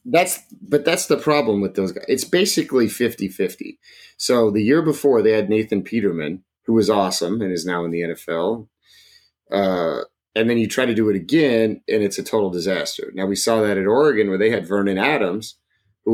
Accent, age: American, 30-49